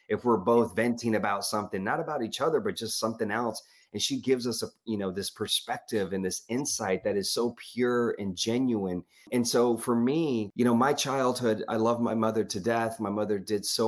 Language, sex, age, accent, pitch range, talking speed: English, male, 30-49, American, 100-120 Hz, 210 wpm